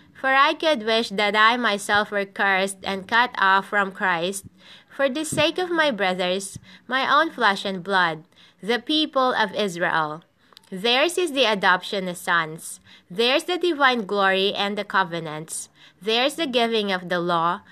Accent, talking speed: Filipino, 165 wpm